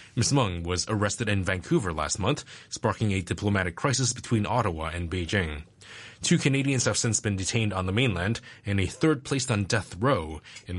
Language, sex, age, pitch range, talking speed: English, male, 20-39, 95-115 Hz, 185 wpm